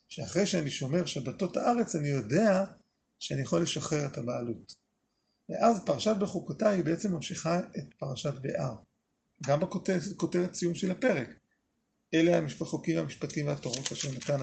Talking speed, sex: 135 wpm, male